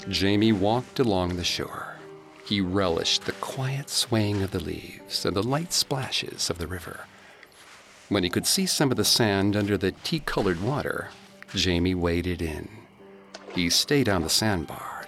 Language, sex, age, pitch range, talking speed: English, male, 50-69, 90-130 Hz, 160 wpm